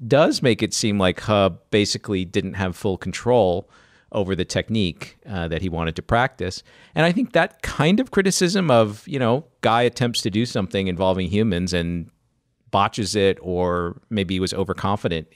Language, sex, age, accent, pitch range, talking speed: English, male, 50-69, American, 85-110 Hz, 175 wpm